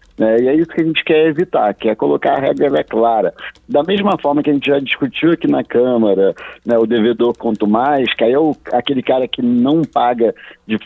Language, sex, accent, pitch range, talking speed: Portuguese, male, Brazilian, 110-140 Hz, 210 wpm